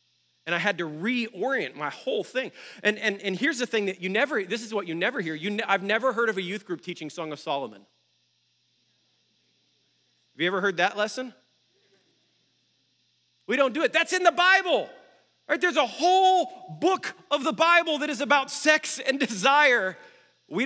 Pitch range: 170-250 Hz